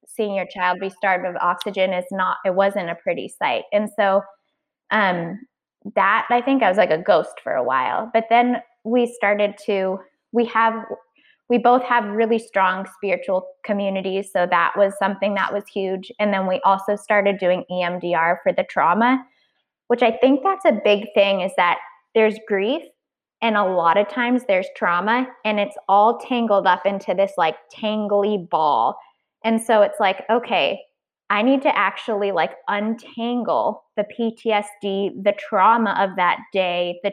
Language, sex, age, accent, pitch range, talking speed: English, female, 20-39, American, 195-235 Hz, 170 wpm